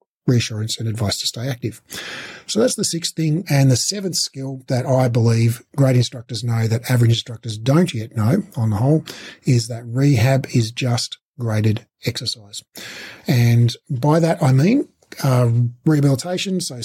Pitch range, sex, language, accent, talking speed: 115-140 Hz, male, English, Australian, 160 wpm